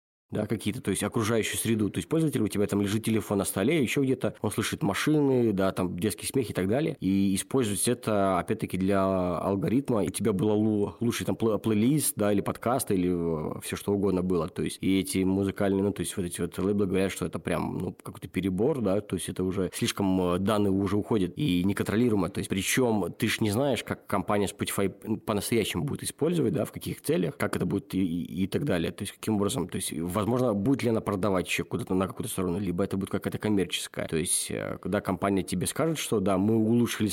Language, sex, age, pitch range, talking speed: Russian, male, 20-39, 95-115 Hz, 220 wpm